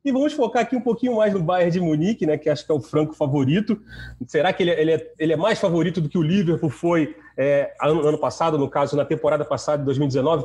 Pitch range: 145-185 Hz